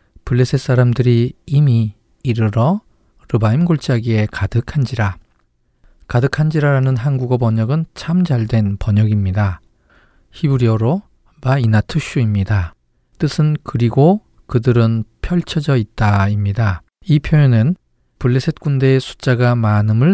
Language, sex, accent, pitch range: Korean, male, native, 110-140 Hz